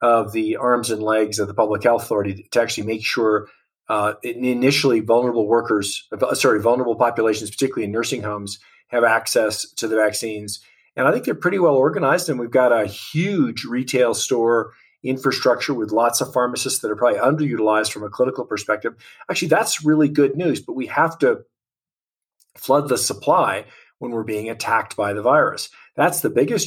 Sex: male